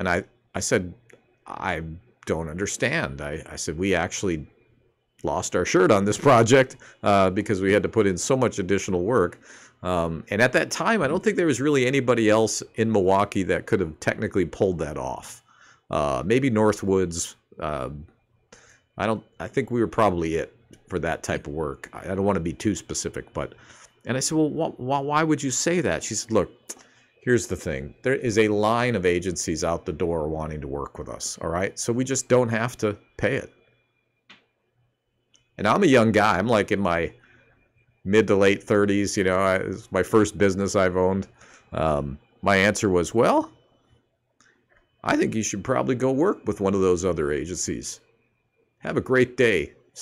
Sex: male